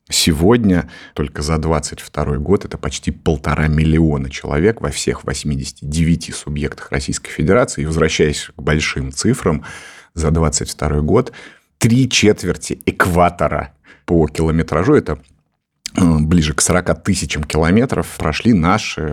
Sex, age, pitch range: male, 30-49, 75-100 Hz